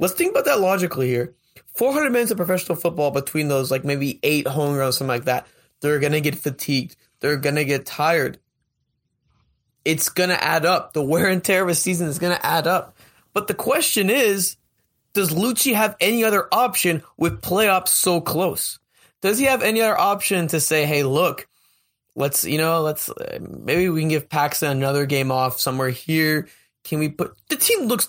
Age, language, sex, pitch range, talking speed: 20-39, English, male, 145-185 Hz, 200 wpm